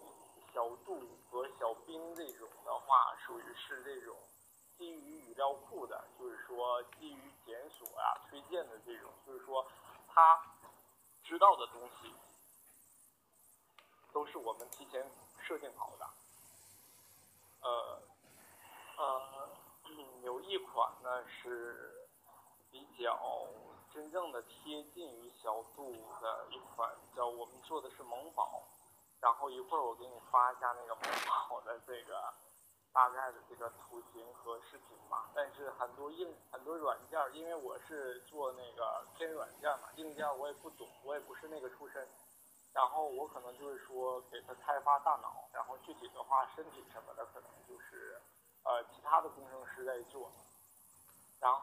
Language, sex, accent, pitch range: Chinese, male, native, 125-180 Hz